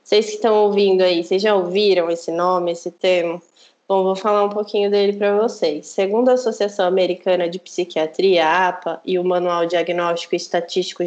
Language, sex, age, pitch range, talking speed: Portuguese, female, 20-39, 180-225 Hz, 180 wpm